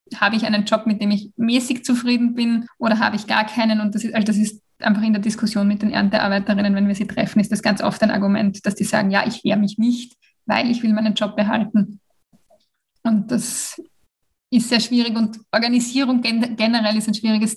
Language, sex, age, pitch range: German, female, 20-39, 210-235 Hz